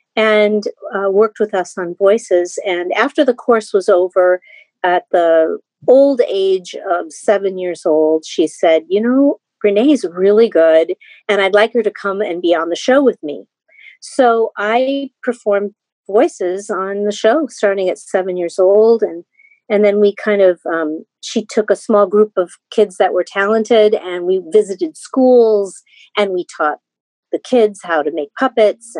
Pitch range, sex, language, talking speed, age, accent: 175-225 Hz, female, English, 170 wpm, 40-59, American